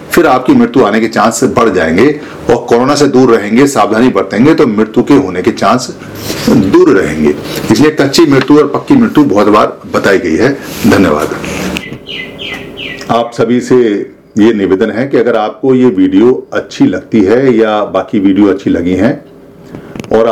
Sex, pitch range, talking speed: male, 105-130 Hz, 150 wpm